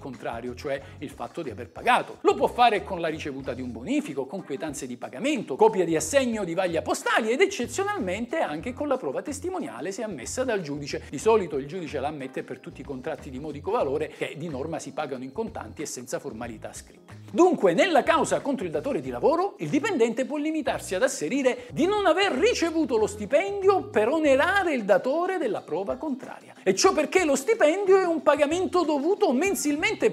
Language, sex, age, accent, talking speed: Italian, male, 50-69, native, 195 wpm